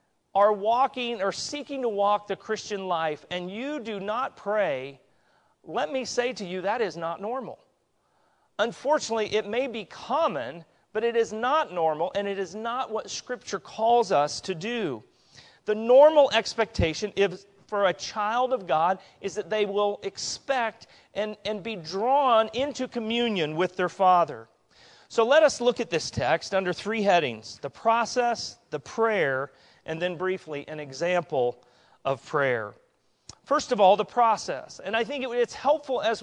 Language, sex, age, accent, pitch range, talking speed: English, male, 40-59, American, 185-240 Hz, 160 wpm